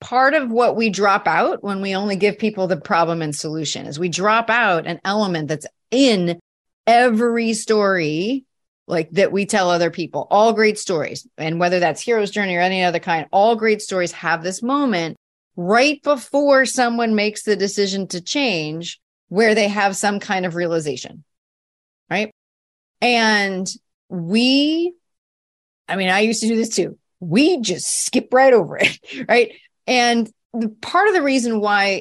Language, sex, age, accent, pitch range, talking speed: English, female, 30-49, American, 175-245 Hz, 165 wpm